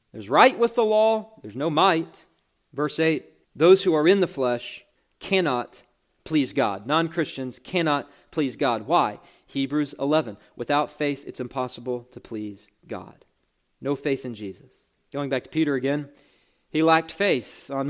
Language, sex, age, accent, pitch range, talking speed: English, male, 40-59, American, 120-160 Hz, 155 wpm